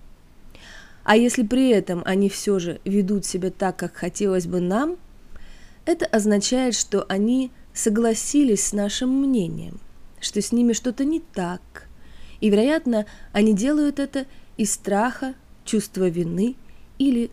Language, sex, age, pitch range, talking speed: Russian, female, 20-39, 195-250 Hz, 130 wpm